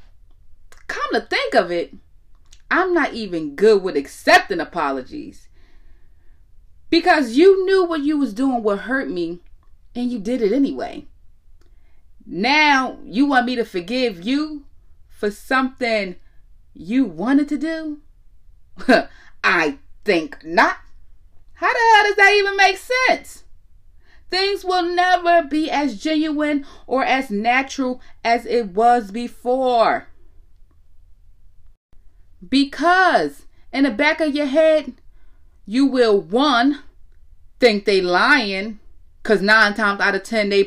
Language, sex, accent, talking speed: English, female, American, 125 wpm